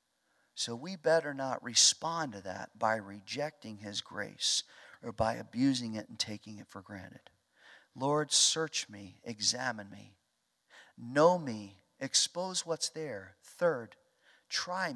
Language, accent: English, American